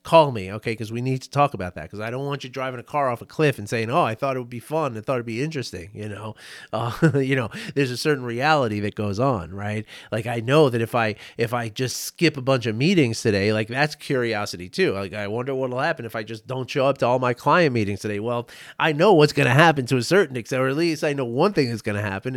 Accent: American